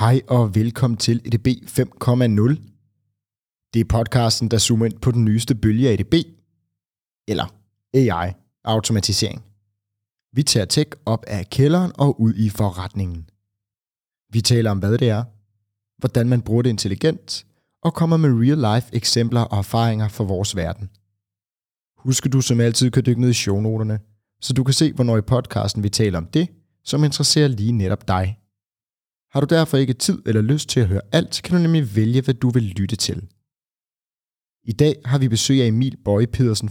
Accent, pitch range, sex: native, 105-125 Hz, male